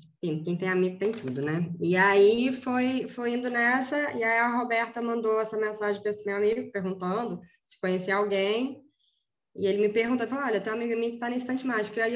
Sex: female